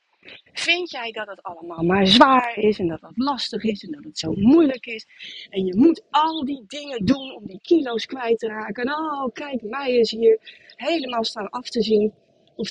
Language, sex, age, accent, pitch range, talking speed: Dutch, female, 30-49, Dutch, 210-315 Hz, 210 wpm